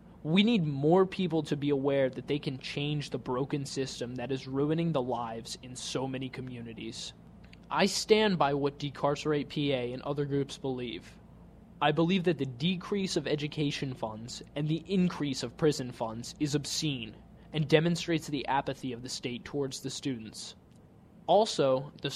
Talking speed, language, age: 165 wpm, English, 20-39